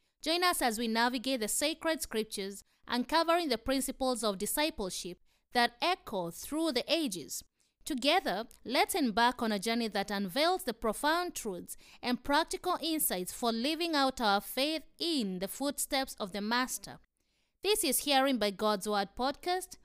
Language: English